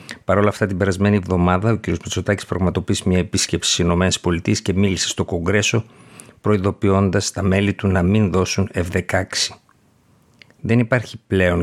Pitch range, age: 90-110 Hz, 50-69